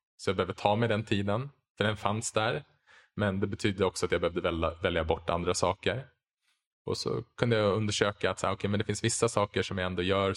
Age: 20-39